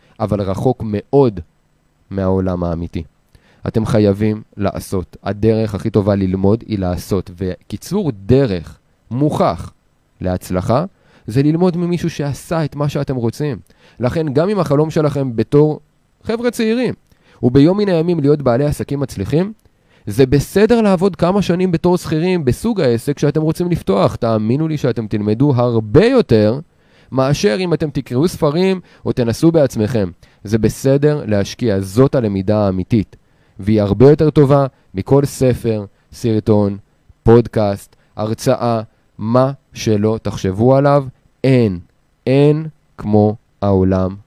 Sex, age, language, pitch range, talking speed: male, 20-39, Hebrew, 100-145 Hz, 120 wpm